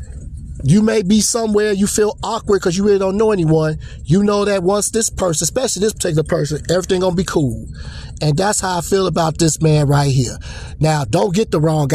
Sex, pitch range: male, 155-200 Hz